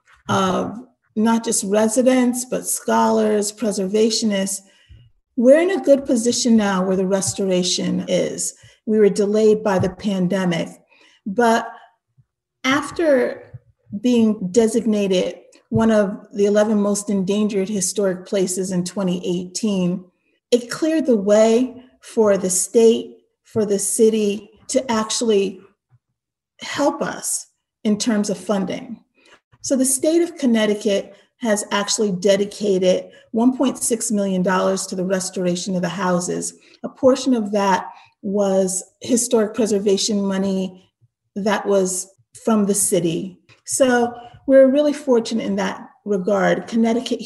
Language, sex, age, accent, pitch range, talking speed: English, female, 40-59, American, 195-235 Hz, 115 wpm